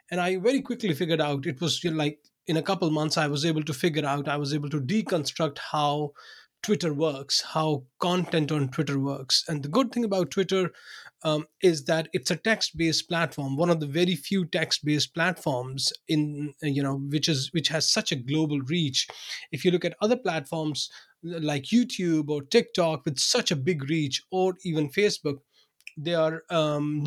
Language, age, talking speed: English, 30-49, 195 wpm